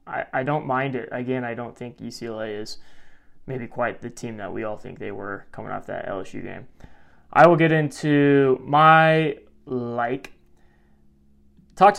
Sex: male